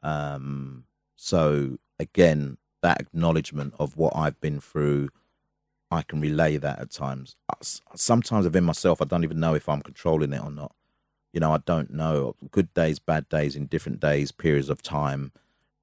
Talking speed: 165 wpm